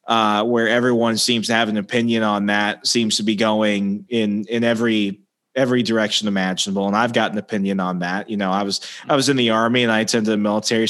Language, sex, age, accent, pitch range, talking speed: English, male, 20-39, American, 115-130 Hz, 225 wpm